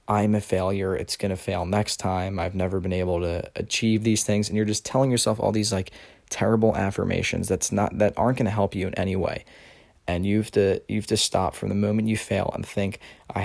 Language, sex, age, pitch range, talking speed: English, male, 20-39, 95-110 Hz, 235 wpm